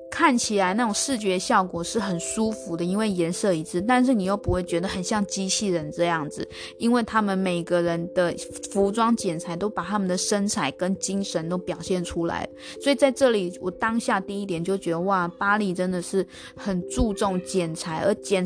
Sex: female